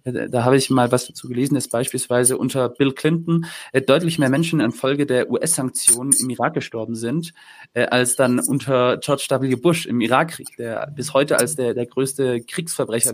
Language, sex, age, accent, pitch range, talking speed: German, male, 20-39, German, 125-145 Hz, 175 wpm